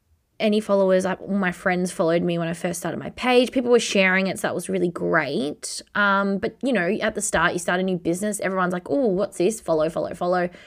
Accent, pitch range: Australian, 175-225 Hz